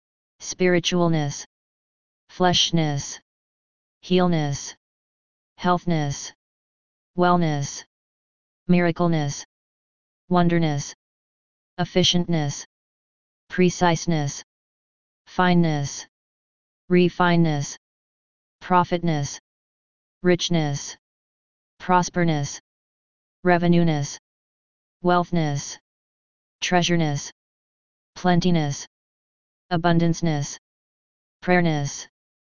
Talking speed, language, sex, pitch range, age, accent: 35 wpm, English, female, 145-175 Hz, 30-49, American